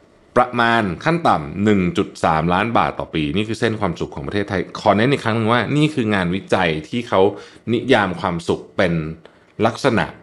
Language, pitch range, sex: Thai, 85-120 Hz, male